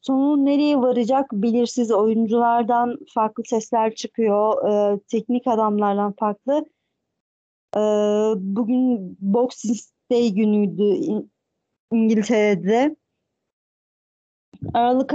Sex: female